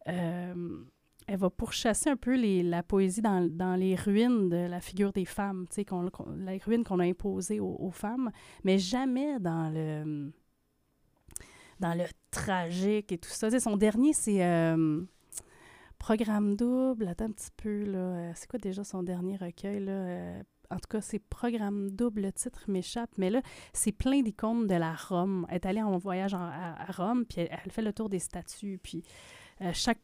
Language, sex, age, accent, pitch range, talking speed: French, female, 30-49, Canadian, 175-210 Hz, 190 wpm